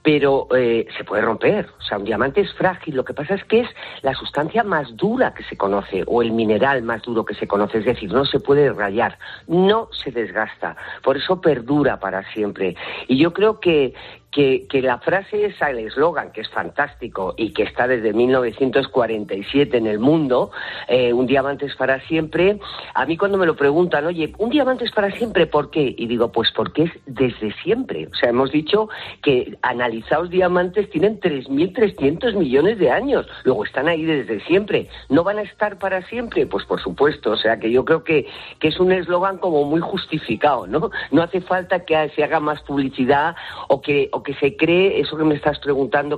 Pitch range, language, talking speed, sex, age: 125-170 Hz, Spanish, 200 wpm, female, 40-59